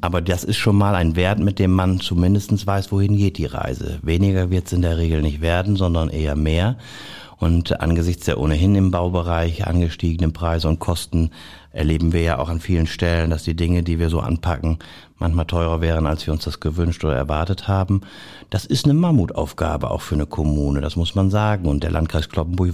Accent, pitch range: German, 80-100 Hz